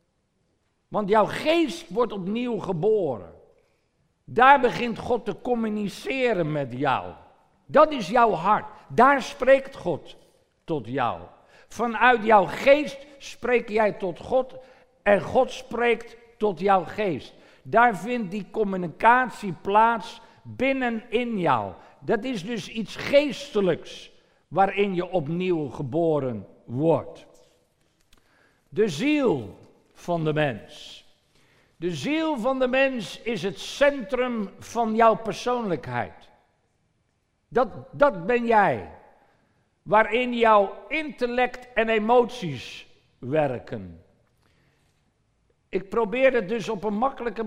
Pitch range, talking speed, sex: 180-245 Hz, 110 wpm, male